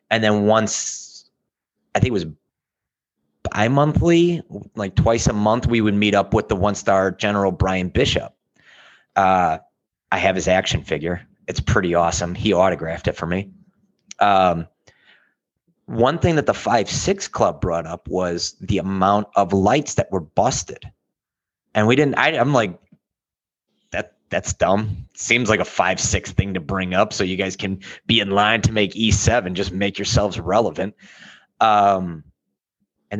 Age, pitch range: 30-49, 95-110 Hz